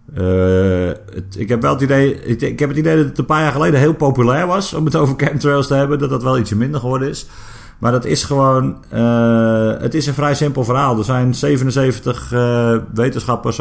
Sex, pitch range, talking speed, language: male, 100-130 Hz, 220 wpm, Dutch